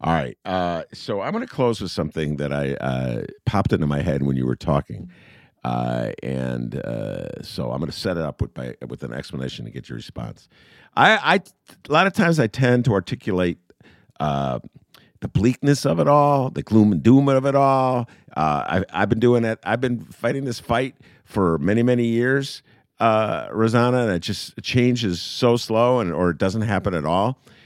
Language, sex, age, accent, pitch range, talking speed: English, male, 50-69, American, 85-130 Hz, 200 wpm